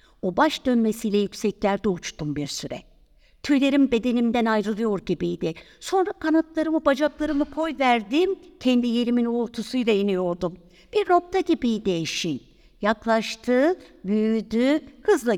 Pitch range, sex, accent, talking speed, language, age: 180-290 Hz, female, native, 100 wpm, Turkish, 60-79